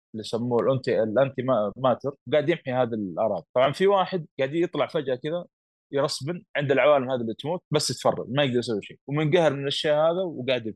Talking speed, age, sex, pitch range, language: 180 wpm, 20-39, male, 110-155 Hz, Arabic